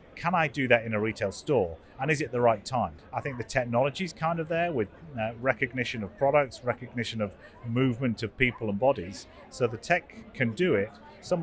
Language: English